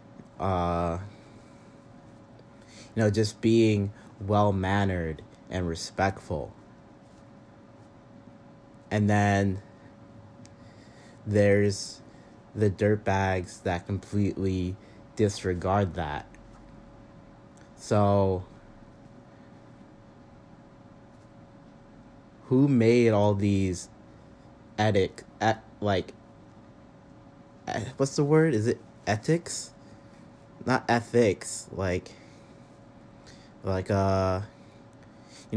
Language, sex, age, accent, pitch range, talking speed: English, male, 20-39, American, 95-115 Hz, 70 wpm